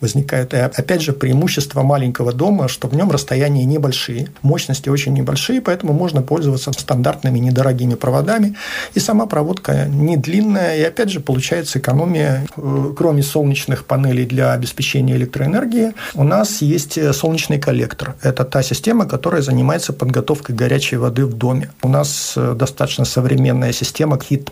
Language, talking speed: Russian, 140 wpm